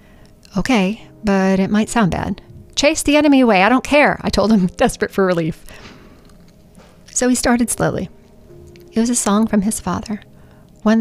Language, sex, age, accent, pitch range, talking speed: English, female, 40-59, American, 190-245 Hz, 170 wpm